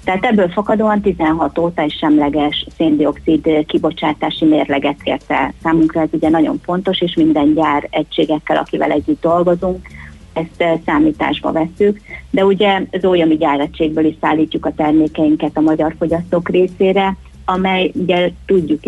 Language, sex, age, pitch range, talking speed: Hungarian, female, 30-49, 155-180 Hz, 135 wpm